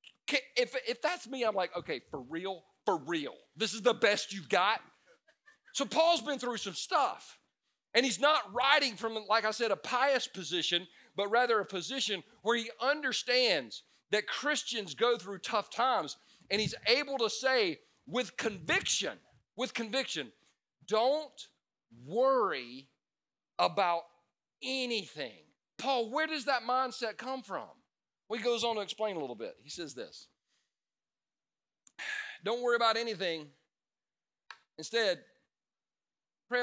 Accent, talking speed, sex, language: American, 140 wpm, male, English